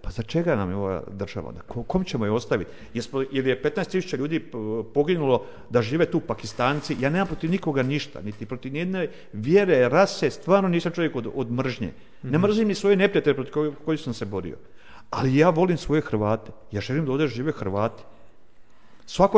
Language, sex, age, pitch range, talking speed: Croatian, male, 50-69, 120-185 Hz, 190 wpm